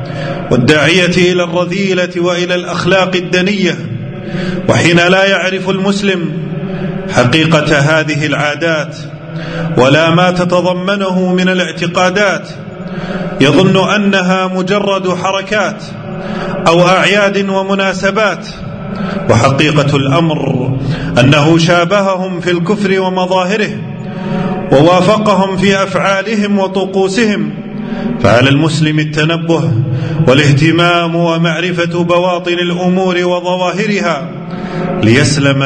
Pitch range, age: 150-185 Hz, 30-49